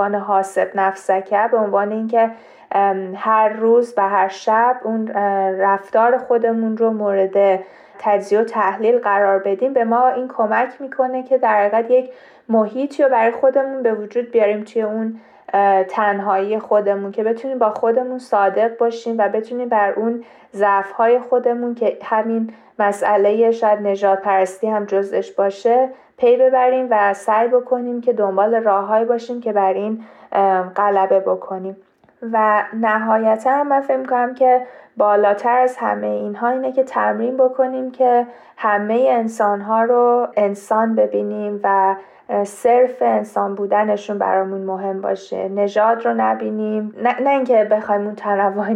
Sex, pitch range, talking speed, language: female, 200-240 Hz, 135 wpm, Persian